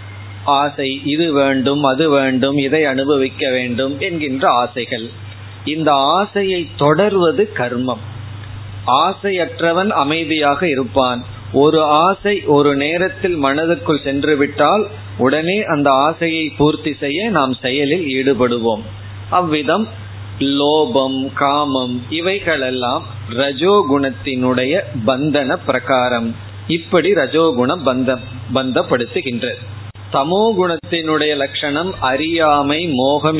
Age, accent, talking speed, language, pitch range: 30-49, native, 85 wpm, Tamil, 125-155 Hz